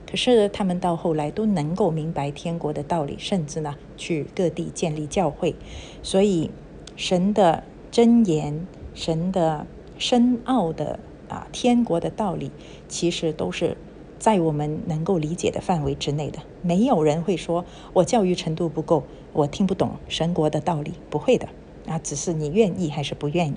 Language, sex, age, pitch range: Chinese, female, 50-69, 160-195 Hz